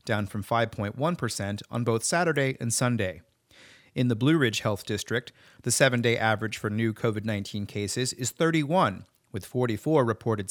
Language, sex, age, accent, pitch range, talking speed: English, male, 40-59, American, 110-145 Hz, 150 wpm